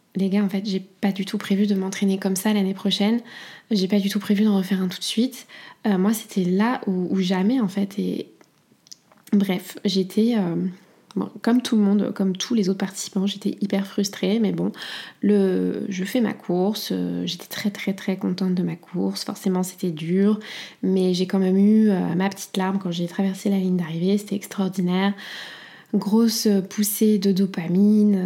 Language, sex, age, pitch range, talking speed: French, female, 20-39, 190-220 Hz, 195 wpm